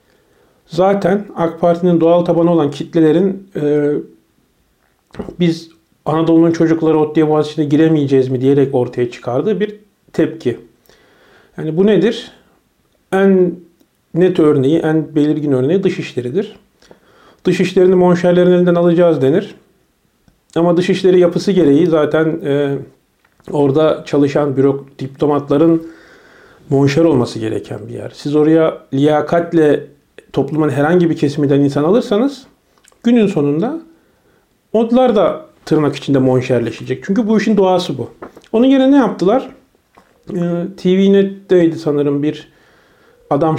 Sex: male